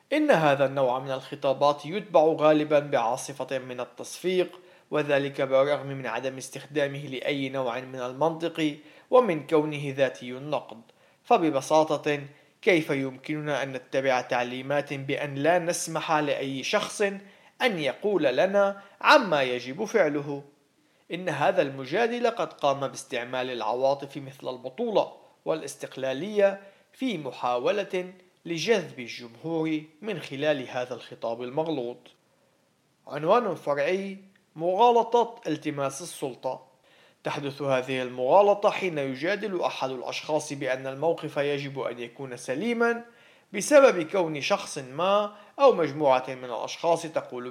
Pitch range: 135-180 Hz